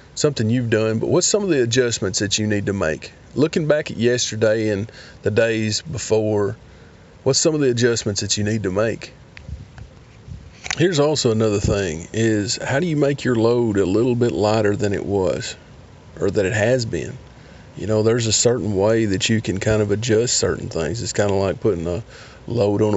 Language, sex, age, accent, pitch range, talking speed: English, male, 40-59, American, 105-120 Hz, 200 wpm